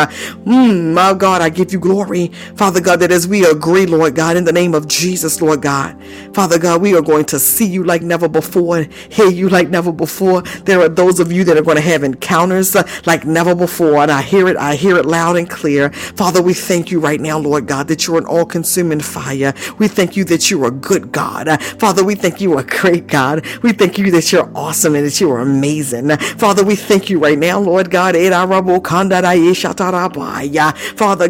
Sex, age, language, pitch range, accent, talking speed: female, 50-69, English, 165-195 Hz, American, 215 wpm